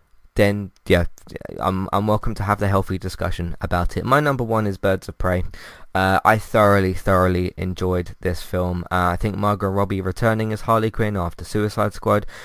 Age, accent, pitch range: 20-39, British, 90-110 Hz